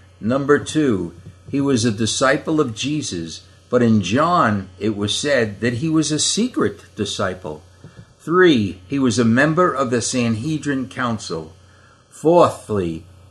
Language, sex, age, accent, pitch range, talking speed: English, male, 60-79, American, 100-140 Hz, 135 wpm